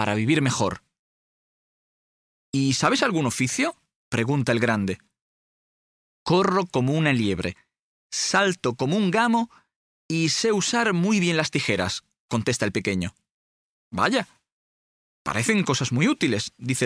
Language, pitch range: Slovak, 120-195 Hz